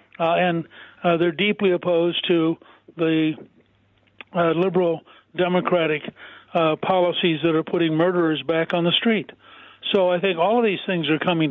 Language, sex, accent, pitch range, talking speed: English, male, American, 160-185 Hz, 155 wpm